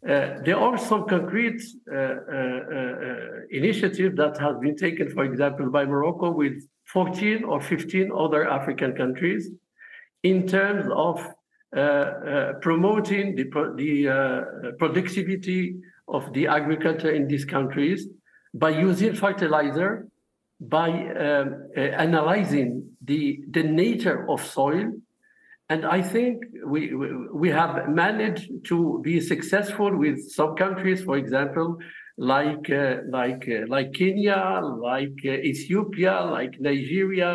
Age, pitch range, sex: 50-69, 145-195 Hz, male